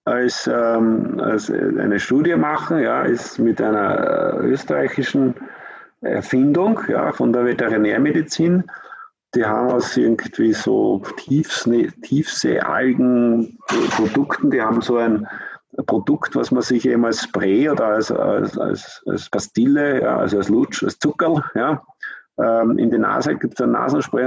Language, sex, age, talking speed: German, male, 50-69, 135 wpm